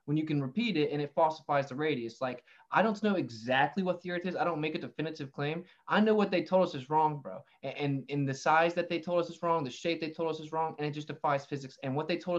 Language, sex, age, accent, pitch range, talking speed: English, male, 20-39, American, 130-175 Hz, 290 wpm